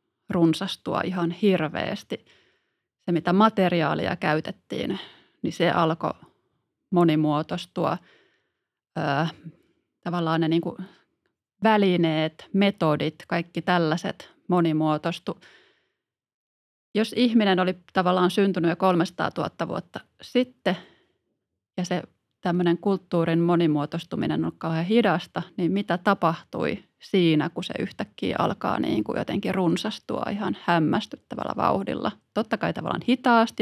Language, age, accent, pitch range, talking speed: Finnish, 30-49, native, 165-200 Hz, 100 wpm